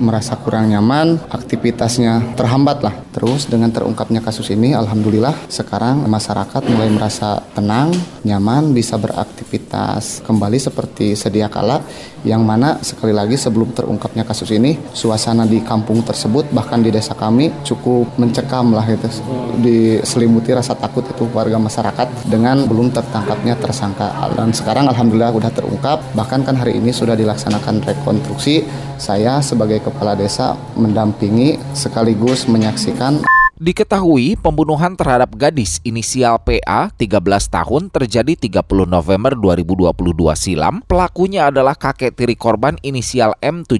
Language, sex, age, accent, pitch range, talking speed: Indonesian, male, 30-49, native, 110-140 Hz, 125 wpm